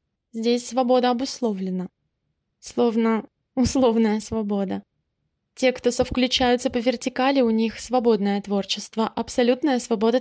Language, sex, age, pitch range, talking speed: Russian, female, 20-39, 220-255 Hz, 100 wpm